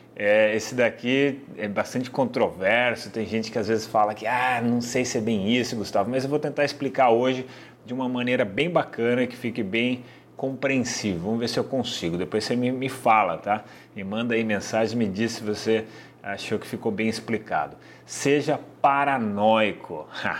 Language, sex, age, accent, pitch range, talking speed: Portuguese, male, 30-49, Brazilian, 110-150 Hz, 180 wpm